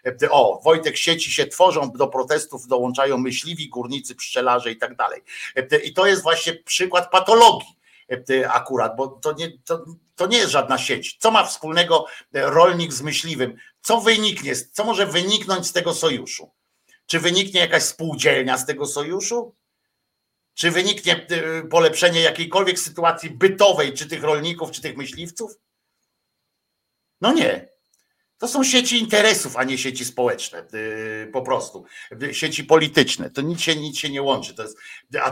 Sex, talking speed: male, 150 wpm